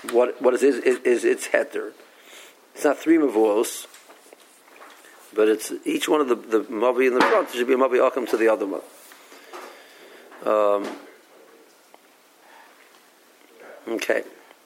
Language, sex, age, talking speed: English, male, 50-69, 140 wpm